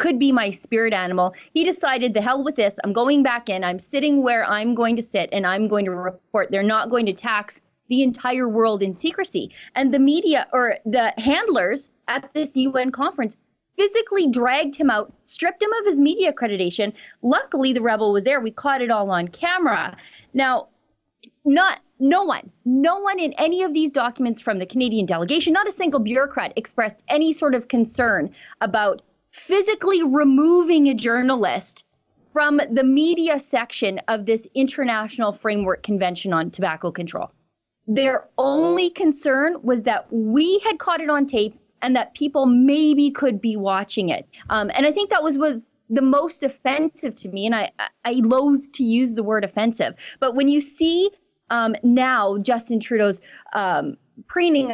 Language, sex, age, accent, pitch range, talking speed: English, female, 30-49, American, 220-310 Hz, 175 wpm